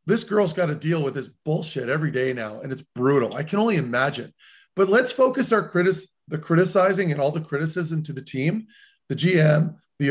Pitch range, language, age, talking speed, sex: 140-175 Hz, English, 30-49, 210 wpm, male